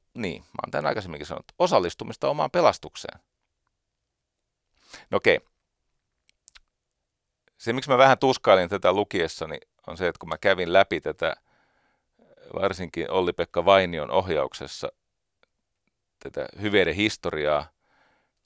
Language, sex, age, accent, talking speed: Finnish, male, 40-59, native, 105 wpm